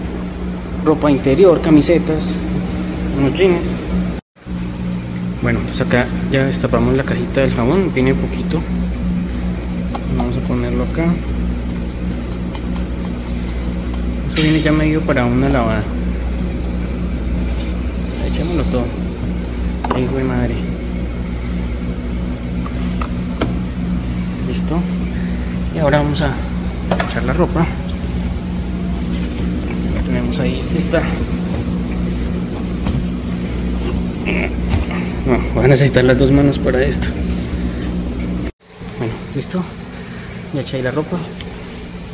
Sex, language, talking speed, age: male, Spanish, 85 wpm, 20-39